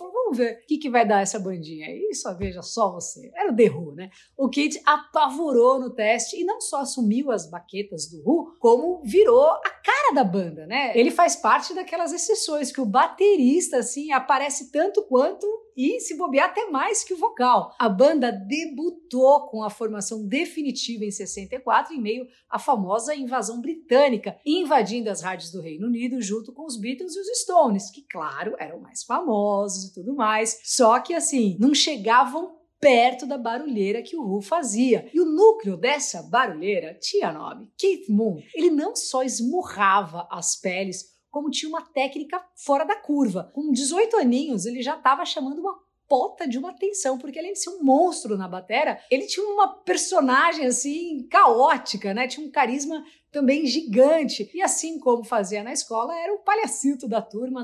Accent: Brazilian